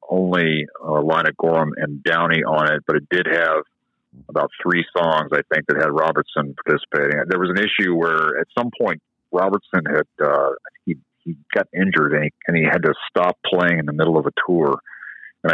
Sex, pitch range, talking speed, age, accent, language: male, 80-100 Hz, 210 wpm, 40-59, American, English